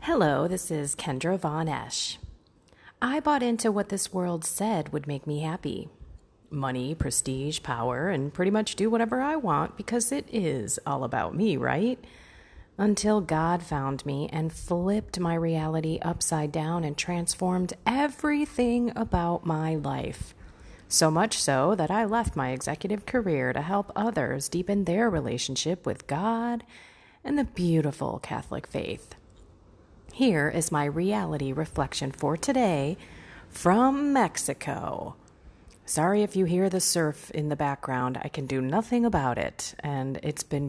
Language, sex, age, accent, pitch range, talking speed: English, female, 30-49, American, 140-195 Hz, 145 wpm